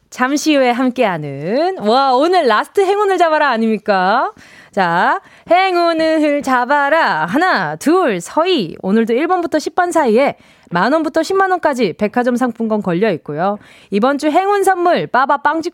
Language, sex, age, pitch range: Korean, female, 20-39, 200-315 Hz